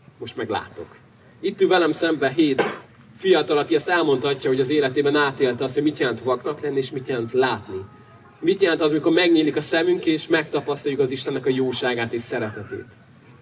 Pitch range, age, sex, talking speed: 130-190 Hz, 30-49, male, 180 wpm